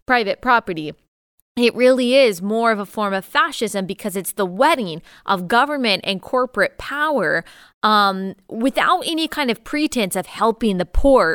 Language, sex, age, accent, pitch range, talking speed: English, female, 20-39, American, 190-240 Hz, 160 wpm